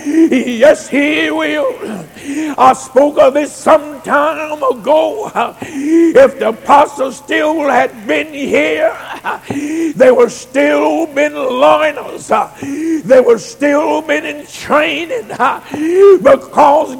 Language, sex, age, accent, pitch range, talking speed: English, male, 60-79, American, 275-315 Hz, 100 wpm